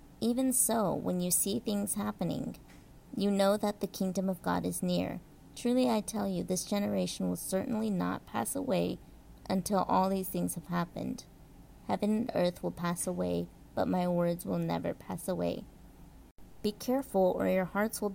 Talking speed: 170 wpm